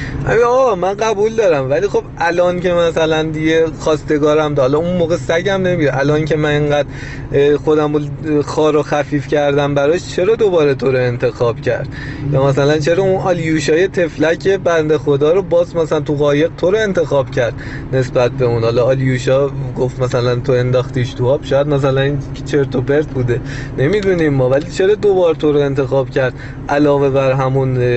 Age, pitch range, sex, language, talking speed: 30-49, 135-190 Hz, male, Persian, 170 wpm